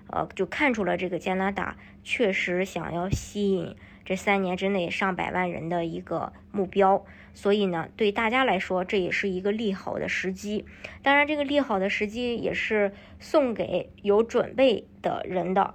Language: Chinese